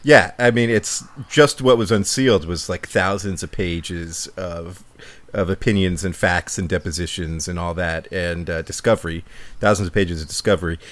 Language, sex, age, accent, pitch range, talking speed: English, male, 40-59, American, 85-110 Hz, 170 wpm